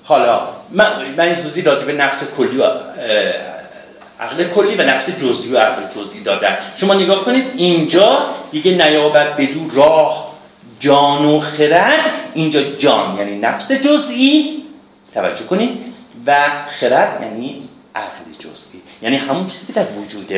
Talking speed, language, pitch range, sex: 135 wpm, Persian, 150-245 Hz, male